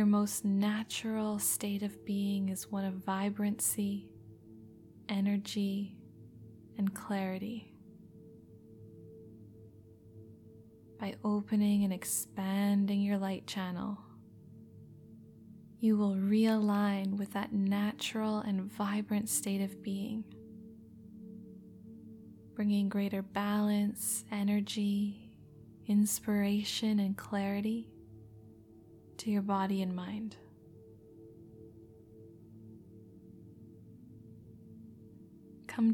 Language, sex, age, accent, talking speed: English, female, 20-39, American, 75 wpm